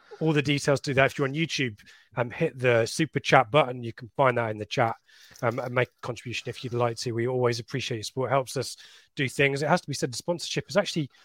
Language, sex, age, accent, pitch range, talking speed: English, male, 20-39, British, 120-145 Hz, 265 wpm